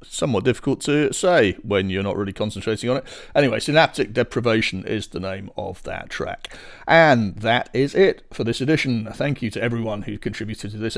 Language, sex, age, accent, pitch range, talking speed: English, male, 40-59, British, 100-120 Hz, 190 wpm